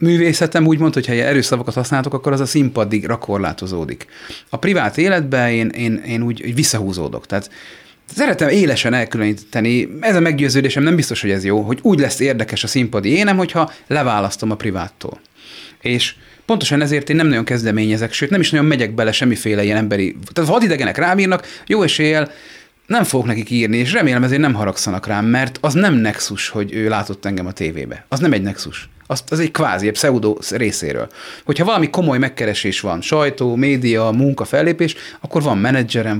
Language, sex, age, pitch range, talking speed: Hungarian, male, 30-49, 105-145 Hz, 180 wpm